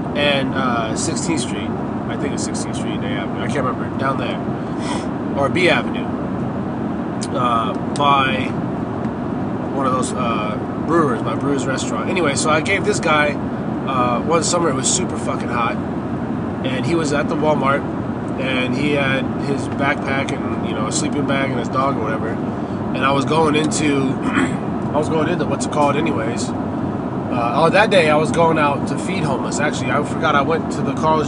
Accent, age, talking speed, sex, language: American, 20-39, 185 wpm, male, English